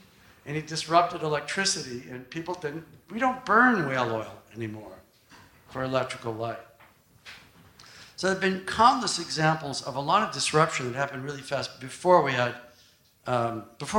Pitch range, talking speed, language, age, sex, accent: 125-160 Hz, 135 wpm, English, 60-79, male, American